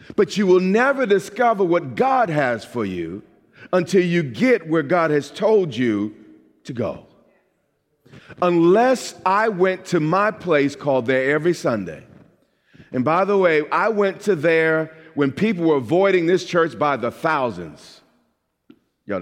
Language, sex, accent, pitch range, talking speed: English, male, American, 155-205 Hz, 150 wpm